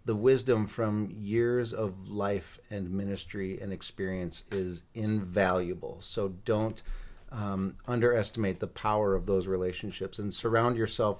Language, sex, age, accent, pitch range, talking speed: English, male, 40-59, American, 95-120 Hz, 130 wpm